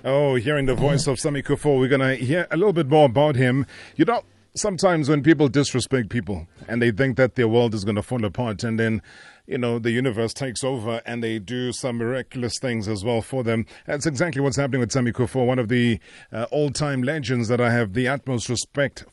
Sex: male